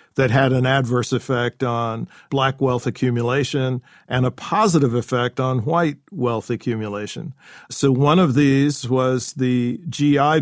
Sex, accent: male, American